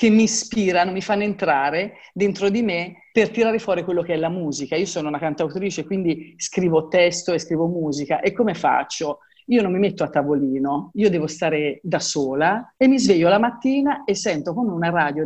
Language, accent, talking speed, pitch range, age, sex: Italian, native, 200 wpm, 155-200 Hz, 40-59, female